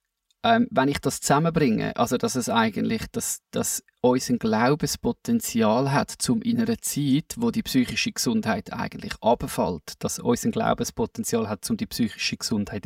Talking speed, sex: 150 wpm, male